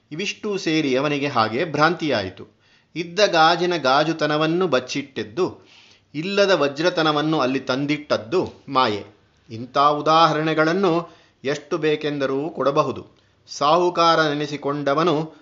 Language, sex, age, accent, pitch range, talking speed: Kannada, male, 30-49, native, 135-165 Hz, 80 wpm